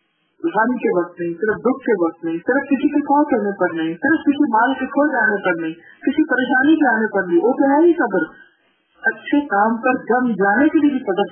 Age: 50-69